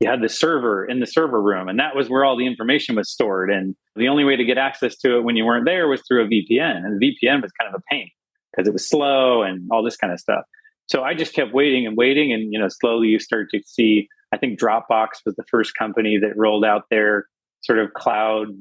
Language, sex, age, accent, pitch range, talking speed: English, male, 30-49, American, 105-130 Hz, 260 wpm